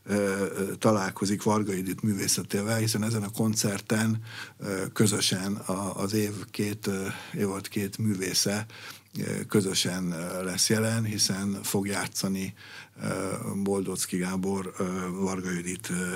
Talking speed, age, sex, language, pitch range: 90 wpm, 60-79, male, Hungarian, 100-120 Hz